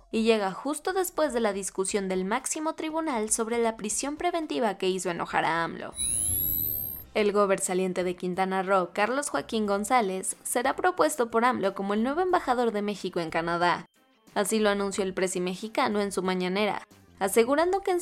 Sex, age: female, 20-39